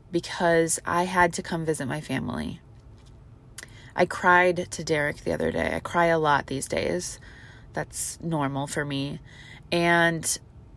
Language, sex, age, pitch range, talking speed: English, female, 20-39, 130-175 Hz, 145 wpm